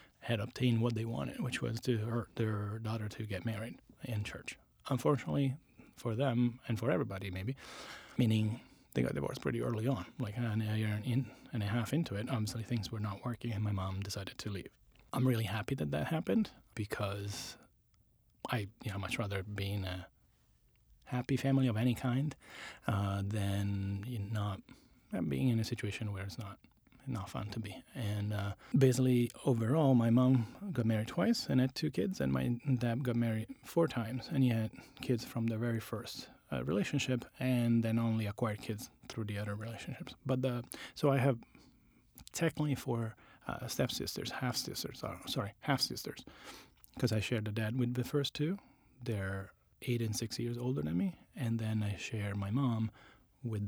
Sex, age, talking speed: male, 30-49, 180 wpm